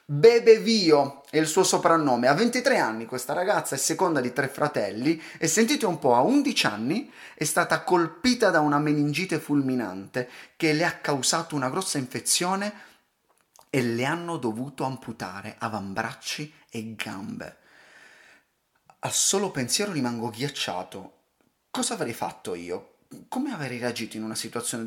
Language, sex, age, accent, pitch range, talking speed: Italian, male, 30-49, native, 125-195 Hz, 145 wpm